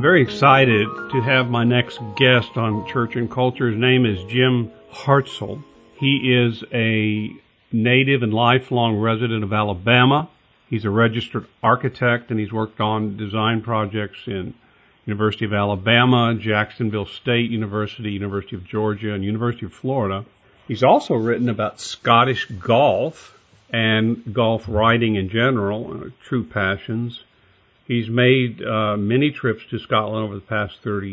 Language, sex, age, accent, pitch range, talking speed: English, male, 50-69, American, 105-125 Hz, 140 wpm